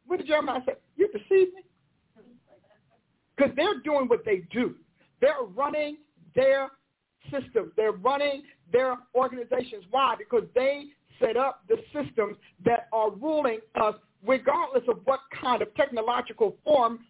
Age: 50-69